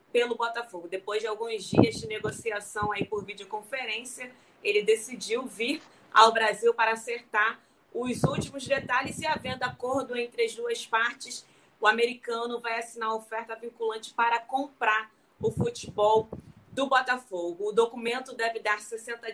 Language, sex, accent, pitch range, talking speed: Portuguese, female, Brazilian, 215-260 Hz, 140 wpm